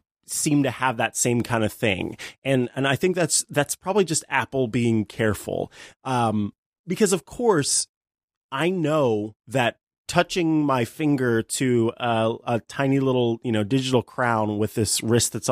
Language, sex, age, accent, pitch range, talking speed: English, male, 30-49, American, 110-135 Hz, 160 wpm